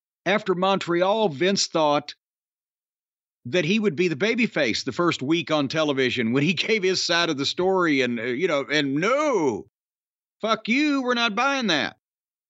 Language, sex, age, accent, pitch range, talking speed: English, male, 50-69, American, 160-215 Hz, 165 wpm